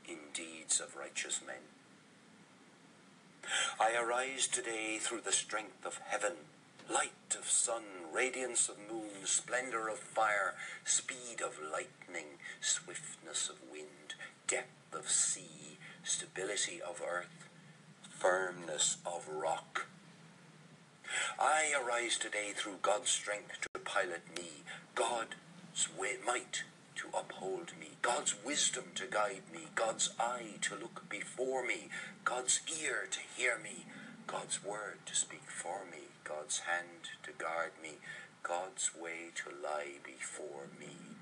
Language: English